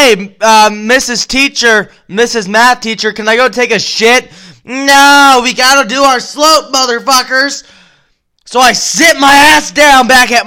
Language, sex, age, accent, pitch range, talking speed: English, male, 20-39, American, 185-250 Hz, 160 wpm